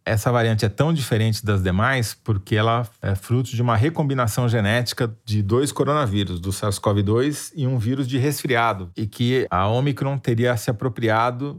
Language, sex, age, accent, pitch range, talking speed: Portuguese, male, 40-59, Brazilian, 105-140 Hz, 165 wpm